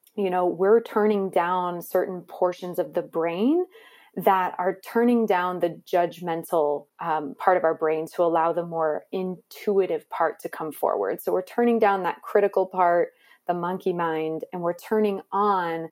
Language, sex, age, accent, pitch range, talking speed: English, female, 20-39, American, 170-205 Hz, 165 wpm